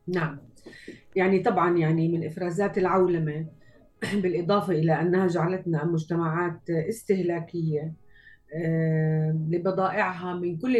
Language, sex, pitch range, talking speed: Arabic, female, 165-225 Hz, 90 wpm